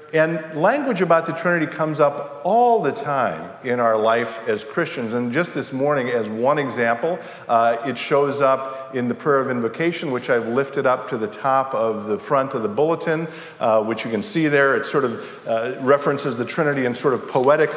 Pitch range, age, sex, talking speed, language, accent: 120-150 Hz, 50-69, male, 205 wpm, English, American